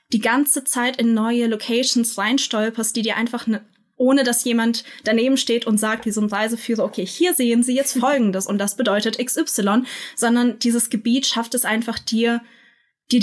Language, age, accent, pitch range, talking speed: German, 20-39, German, 220-250 Hz, 175 wpm